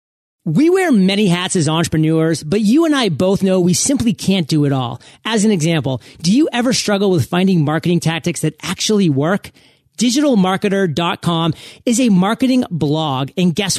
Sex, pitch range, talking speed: male, 165-215 Hz, 170 wpm